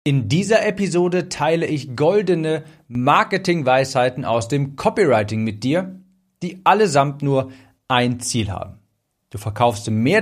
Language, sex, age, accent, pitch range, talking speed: German, male, 40-59, German, 115-155 Hz, 125 wpm